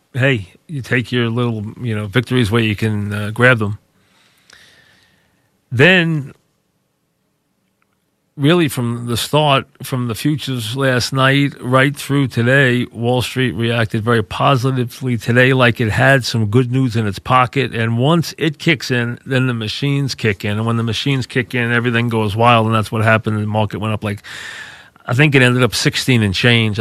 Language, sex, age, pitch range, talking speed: English, male, 40-59, 110-135 Hz, 175 wpm